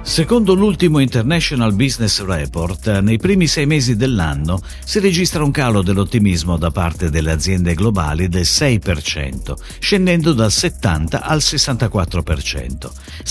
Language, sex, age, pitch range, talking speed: Italian, male, 50-69, 85-145 Hz, 120 wpm